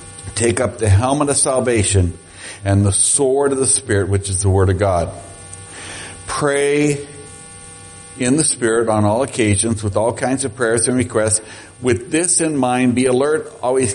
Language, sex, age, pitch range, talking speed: English, male, 60-79, 95-130 Hz, 170 wpm